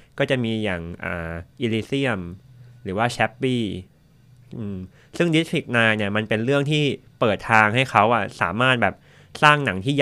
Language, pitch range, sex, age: Thai, 105-130 Hz, male, 20-39